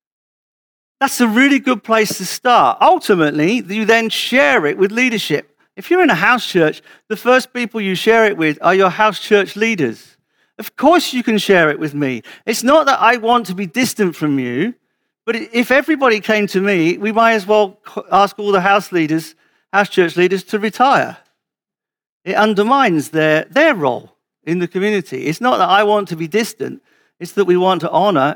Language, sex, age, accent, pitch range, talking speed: English, male, 50-69, British, 175-225 Hz, 195 wpm